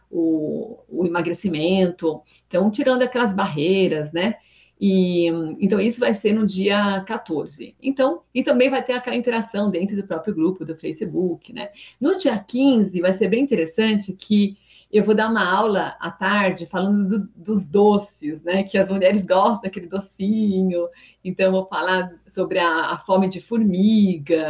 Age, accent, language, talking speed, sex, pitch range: 40-59, Brazilian, Portuguese, 160 wpm, female, 180-215 Hz